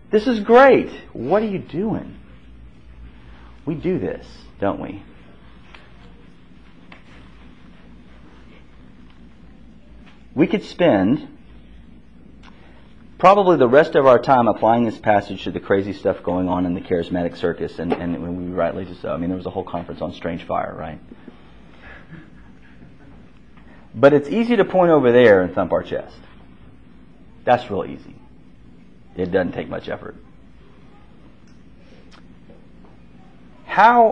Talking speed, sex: 125 wpm, male